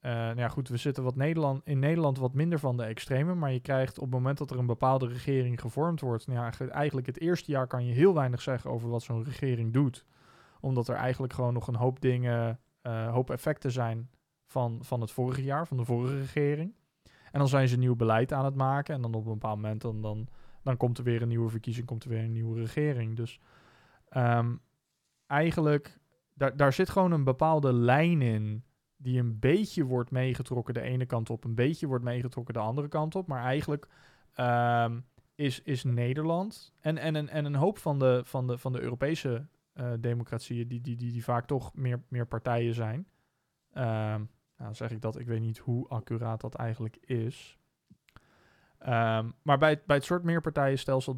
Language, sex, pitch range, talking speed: Dutch, male, 120-145 Hz, 195 wpm